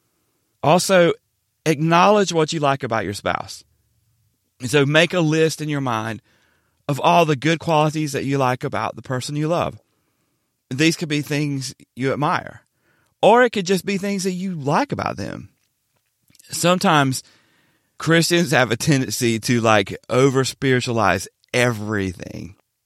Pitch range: 115-160 Hz